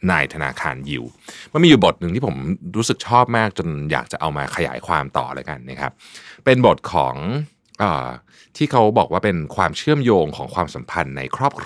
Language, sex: Thai, male